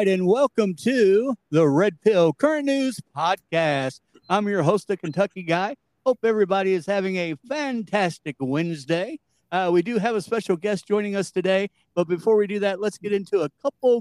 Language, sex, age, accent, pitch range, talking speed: English, male, 50-69, American, 160-200 Hz, 180 wpm